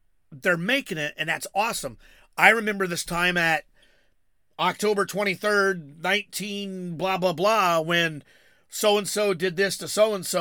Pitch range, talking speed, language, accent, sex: 150-195 Hz, 135 wpm, English, American, male